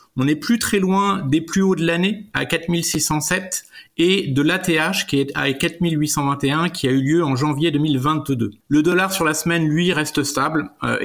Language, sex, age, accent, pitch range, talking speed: French, male, 30-49, French, 135-170 Hz, 190 wpm